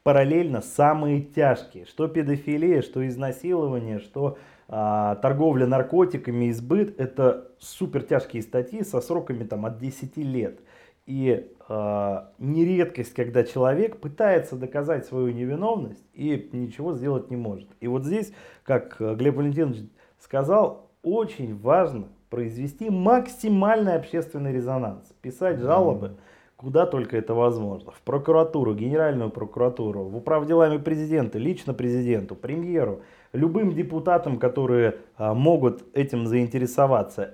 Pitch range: 120-150 Hz